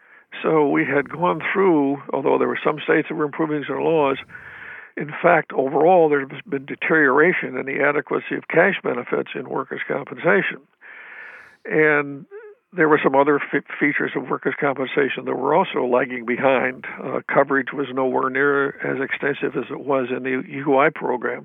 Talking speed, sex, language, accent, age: 160 wpm, male, English, American, 60-79